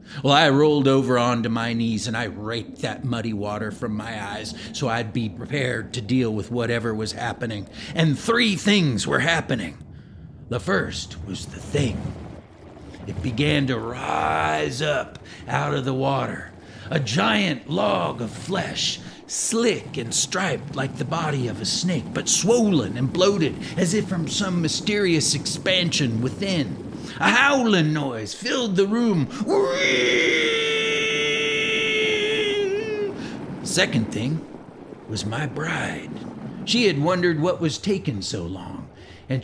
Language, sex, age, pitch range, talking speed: English, male, 40-59, 120-175 Hz, 140 wpm